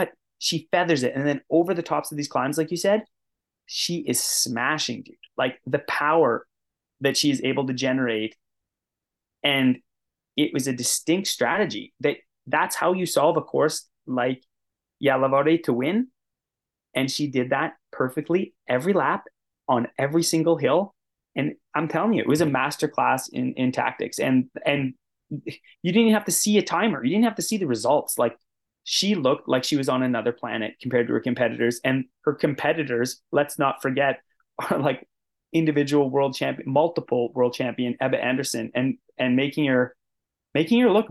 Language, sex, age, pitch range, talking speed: English, male, 20-39, 125-165 Hz, 175 wpm